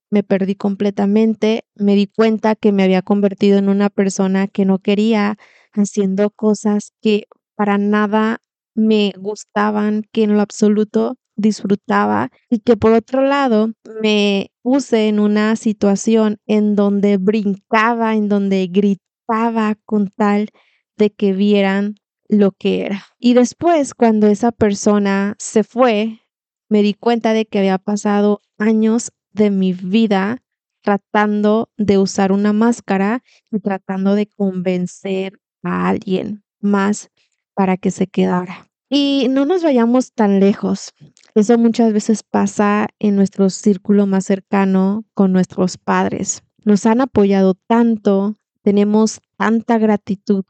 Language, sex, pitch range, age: Spanish, female, 200-220 Hz, 20-39